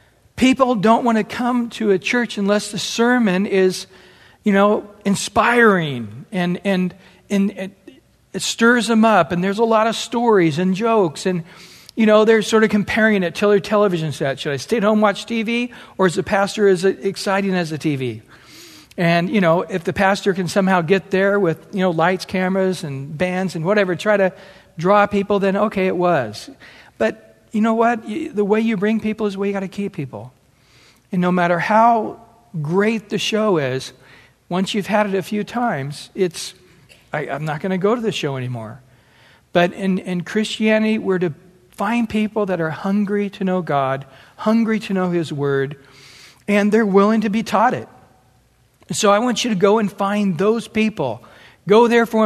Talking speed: 190 wpm